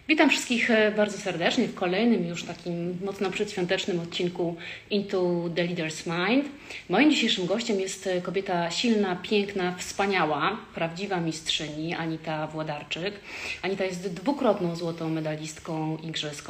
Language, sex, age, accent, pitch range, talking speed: Polish, female, 30-49, native, 165-200 Hz, 120 wpm